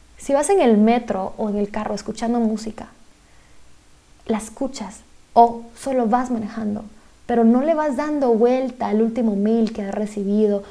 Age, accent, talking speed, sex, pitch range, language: 20-39, Mexican, 165 wpm, female, 220-265 Hz, Spanish